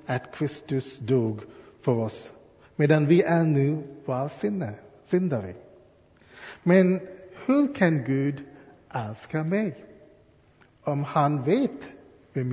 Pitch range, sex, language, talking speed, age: 125-155 Hz, male, Swedish, 100 wpm, 50-69